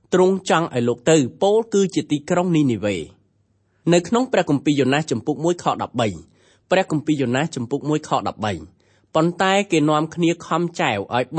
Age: 20-39